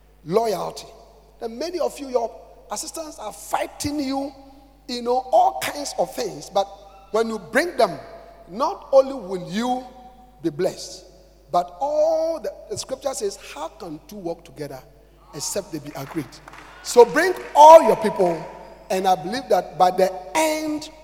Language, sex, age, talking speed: English, male, 50-69, 150 wpm